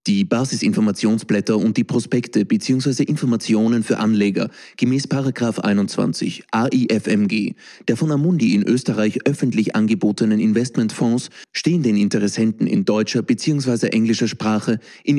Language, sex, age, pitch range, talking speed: German, male, 30-49, 105-130 Hz, 120 wpm